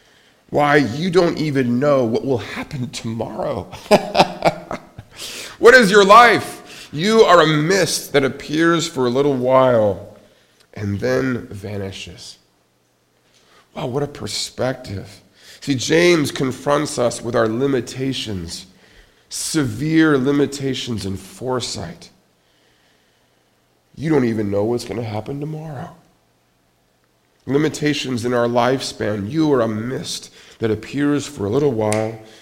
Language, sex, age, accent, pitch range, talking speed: English, male, 40-59, American, 105-140 Hz, 120 wpm